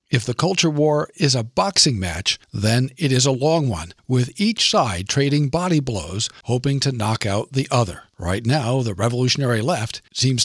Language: English